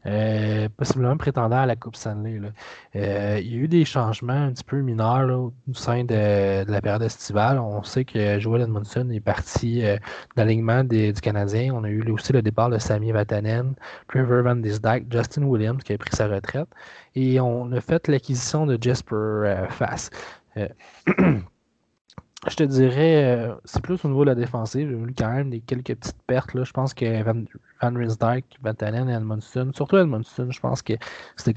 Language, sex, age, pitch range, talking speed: French, male, 20-39, 110-125 Hz, 190 wpm